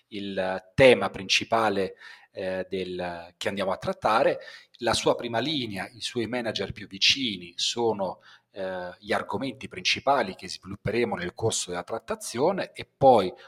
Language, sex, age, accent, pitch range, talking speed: Italian, male, 40-59, native, 100-125 Hz, 135 wpm